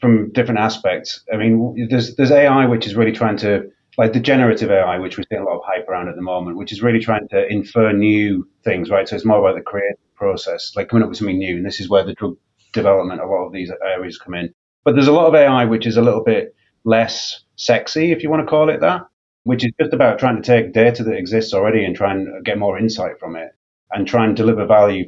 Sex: male